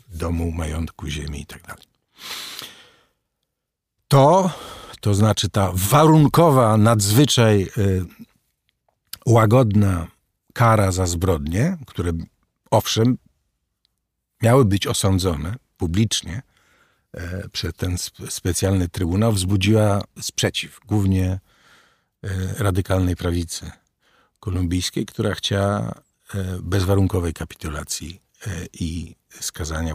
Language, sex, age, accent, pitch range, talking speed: Polish, male, 50-69, native, 85-115 Hz, 75 wpm